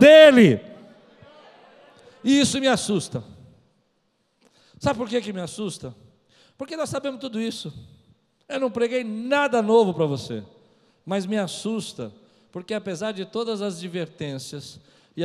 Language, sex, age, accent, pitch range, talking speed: Portuguese, male, 50-69, Brazilian, 130-195 Hz, 130 wpm